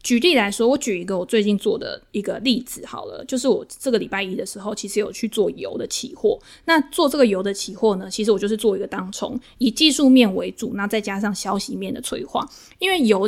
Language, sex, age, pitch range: Chinese, female, 20-39, 205-255 Hz